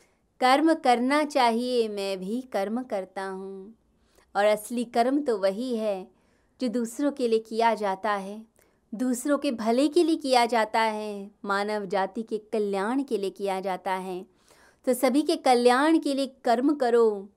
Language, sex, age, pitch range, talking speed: Hindi, female, 20-39, 200-255 Hz, 160 wpm